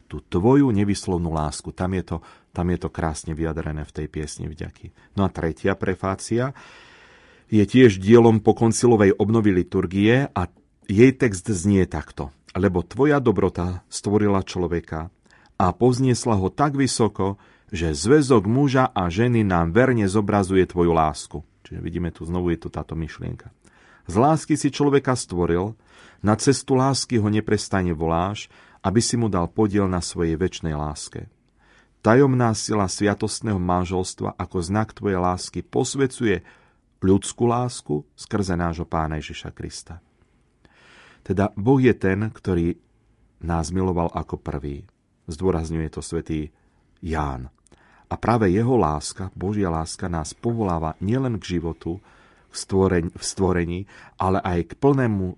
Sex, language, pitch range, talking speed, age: male, Slovak, 85-110 Hz, 135 wpm, 40-59